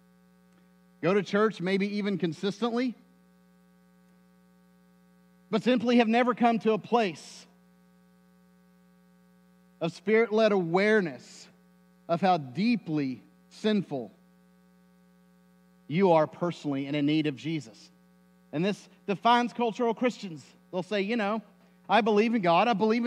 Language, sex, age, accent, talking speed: English, male, 40-59, American, 115 wpm